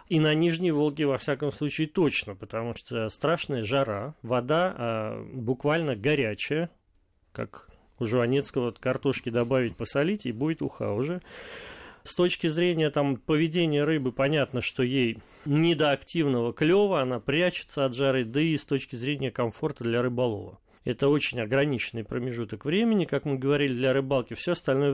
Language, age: Russian, 30-49